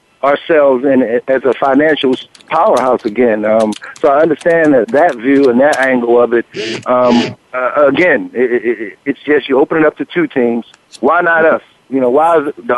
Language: English